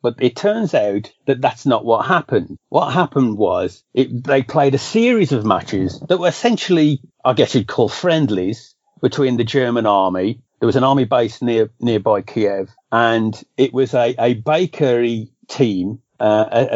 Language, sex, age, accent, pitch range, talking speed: English, male, 40-59, British, 110-140 Hz, 170 wpm